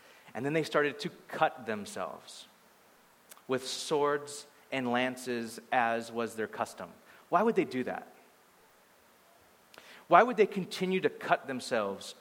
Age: 30-49